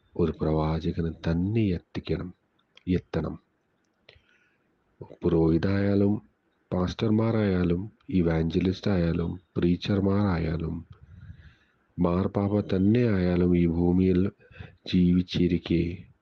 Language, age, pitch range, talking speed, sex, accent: Malayalam, 40-59, 85-95 Hz, 55 wpm, male, native